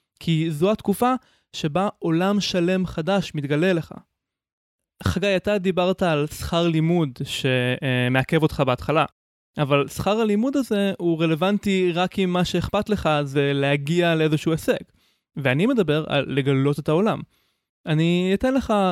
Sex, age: male, 20-39